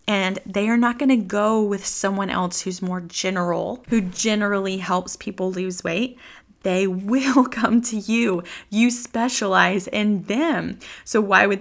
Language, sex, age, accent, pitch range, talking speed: English, female, 20-39, American, 185-235 Hz, 160 wpm